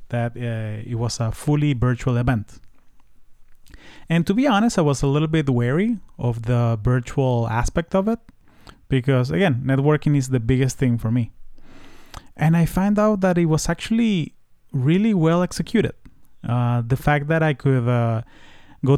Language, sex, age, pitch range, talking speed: English, male, 30-49, 120-145 Hz, 165 wpm